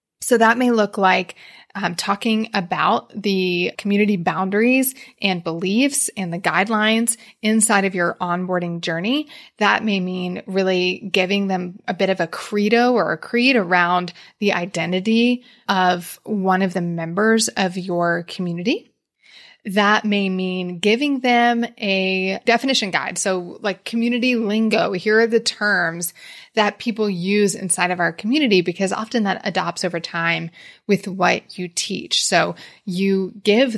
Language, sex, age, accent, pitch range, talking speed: English, female, 20-39, American, 185-225 Hz, 145 wpm